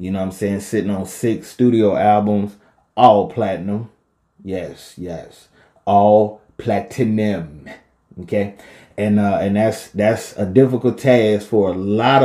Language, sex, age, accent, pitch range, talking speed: English, male, 20-39, American, 100-115 Hz, 135 wpm